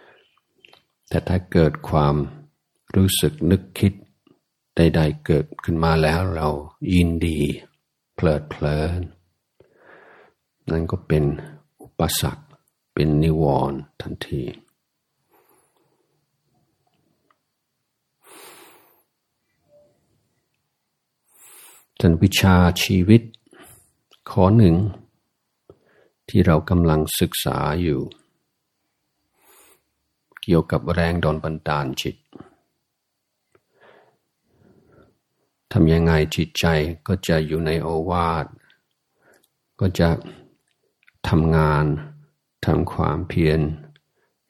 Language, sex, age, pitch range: Thai, male, 60-79, 80-90 Hz